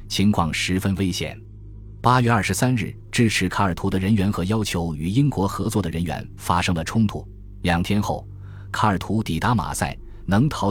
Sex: male